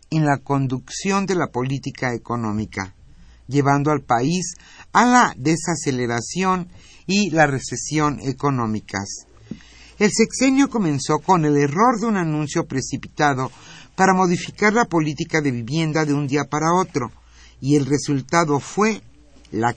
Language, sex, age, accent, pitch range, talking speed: Spanish, male, 50-69, Mexican, 125-170 Hz, 130 wpm